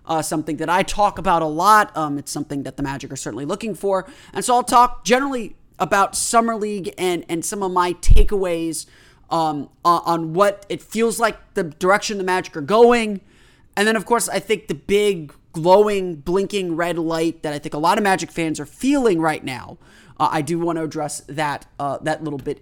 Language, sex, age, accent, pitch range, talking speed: English, male, 30-49, American, 150-190 Hz, 210 wpm